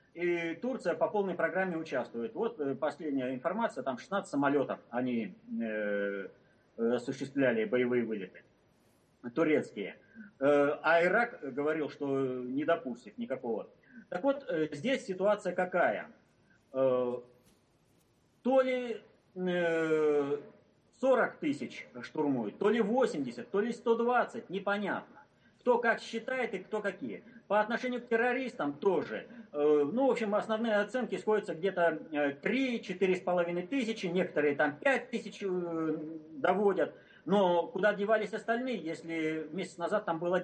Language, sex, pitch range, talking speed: Russian, male, 145-215 Hz, 115 wpm